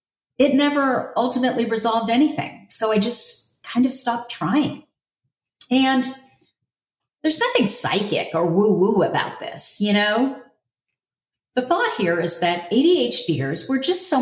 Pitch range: 185-240 Hz